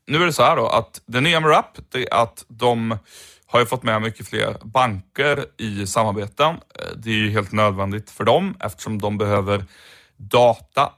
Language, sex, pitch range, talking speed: Swedish, male, 105-120 Hz, 190 wpm